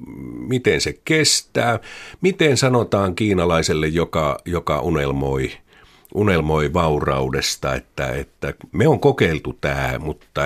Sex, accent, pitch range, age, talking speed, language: male, native, 75-120 Hz, 50-69, 105 wpm, Finnish